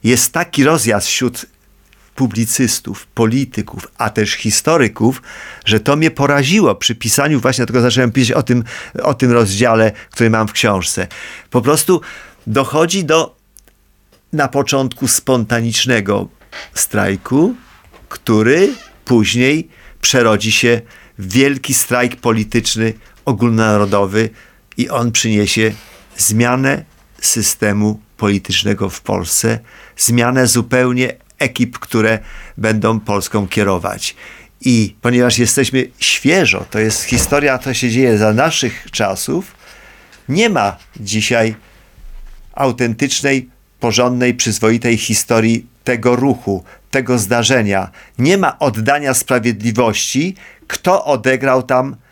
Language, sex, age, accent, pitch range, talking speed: Polish, male, 50-69, native, 110-130 Hz, 105 wpm